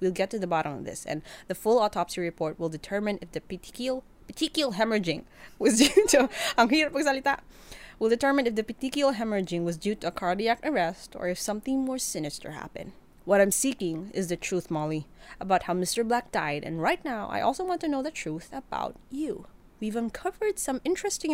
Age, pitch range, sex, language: 20-39, 175-270 Hz, female, English